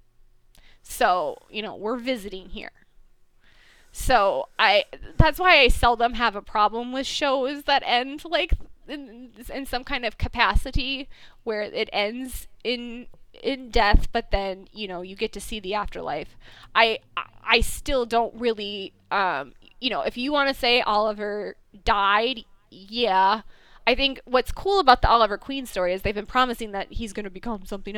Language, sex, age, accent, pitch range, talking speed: English, female, 20-39, American, 200-245 Hz, 165 wpm